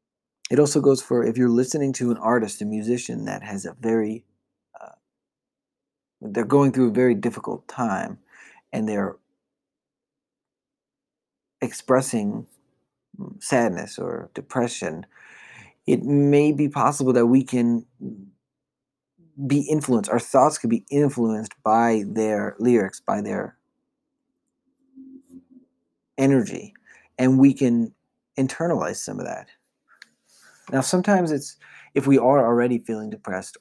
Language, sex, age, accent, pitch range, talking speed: English, male, 40-59, American, 110-140 Hz, 120 wpm